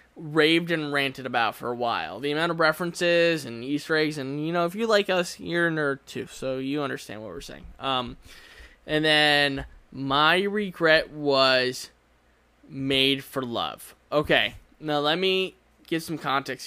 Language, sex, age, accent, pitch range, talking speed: English, male, 20-39, American, 135-165 Hz, 170 wpm